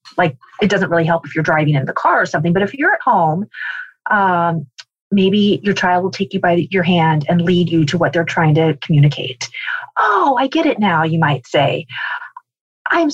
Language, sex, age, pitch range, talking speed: English, female, 30-49, 160-205 Hz, 210 wpm